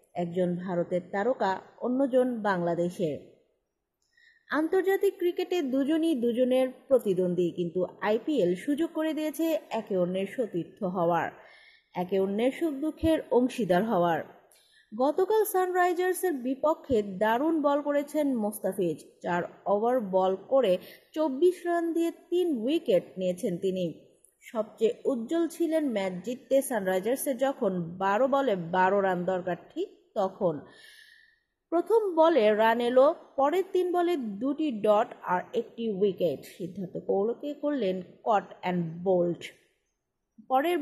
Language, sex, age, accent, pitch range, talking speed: English, female, 30-49, Indian, 190-315 Hz, 95 wpm